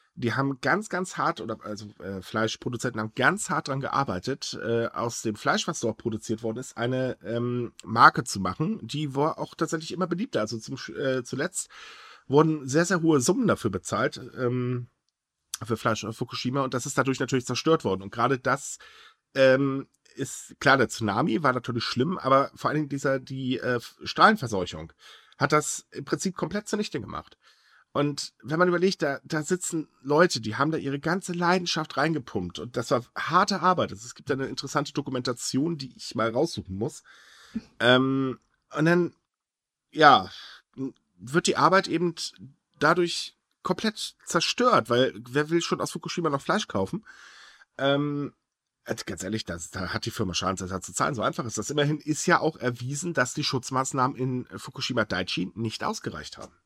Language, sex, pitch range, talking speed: German, male, 120-160 Hz, 175 wpm